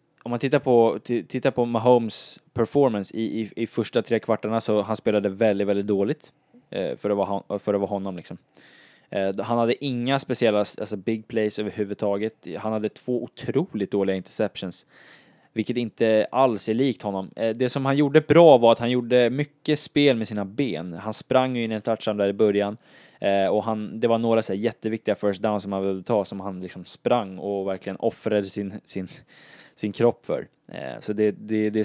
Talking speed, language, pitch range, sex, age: 190 wpm, Swedish, 100-120 Hz, male, 10-29